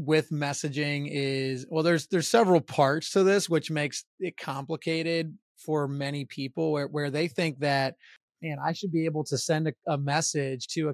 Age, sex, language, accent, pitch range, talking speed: 30-49, male, English, American, 145-170 Hz, 185 wpm